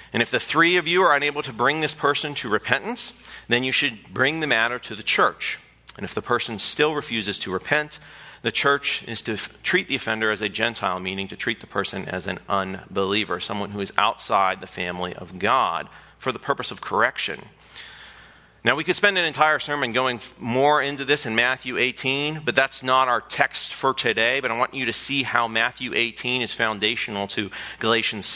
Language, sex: English, male